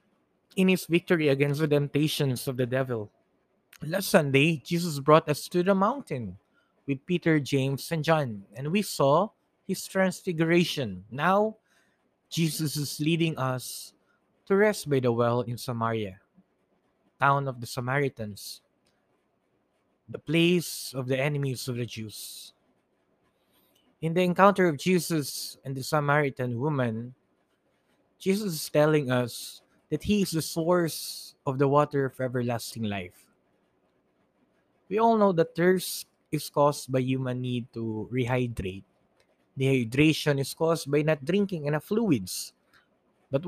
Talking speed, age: 130 wpm, 20-39